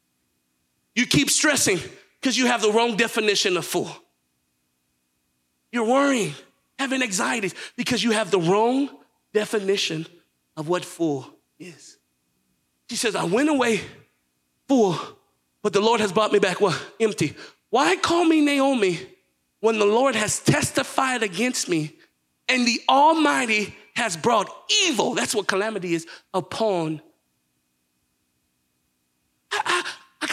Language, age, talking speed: English, 40-59, 125 wpm